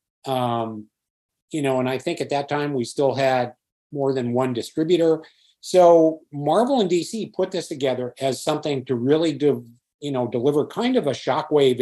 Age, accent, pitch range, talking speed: 50-69, American, 130-160 Hz, 180 wpm